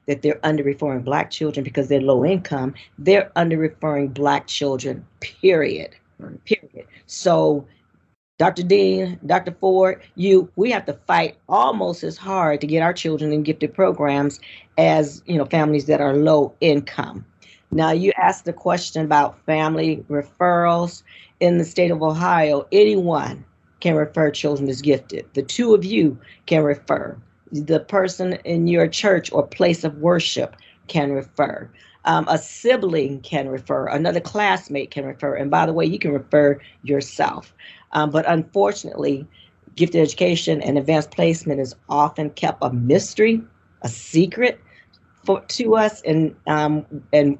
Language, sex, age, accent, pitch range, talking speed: English, female, 40-59, American, 145-175 Hz, 150 wpm